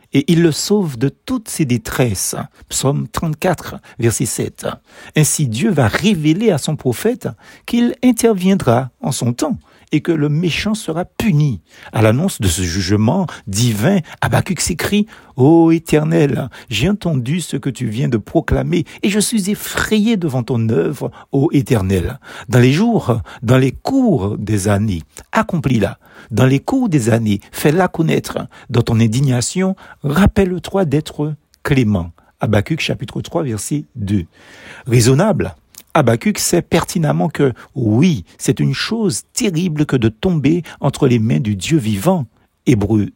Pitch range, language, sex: 115-175 Hz, French, male